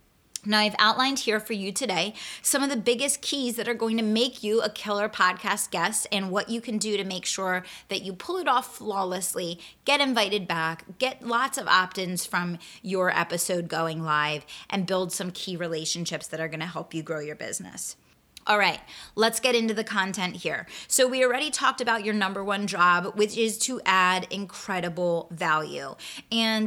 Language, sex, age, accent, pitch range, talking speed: English, female, 20-39, American, 180-235 Hz, 195 wpm